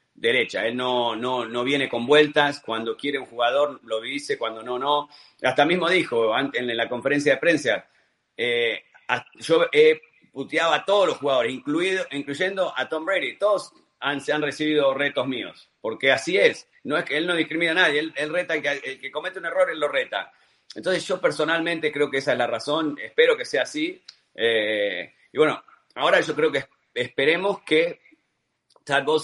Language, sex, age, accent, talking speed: Spanish, male, 40-59, Argentinian, 190 wpm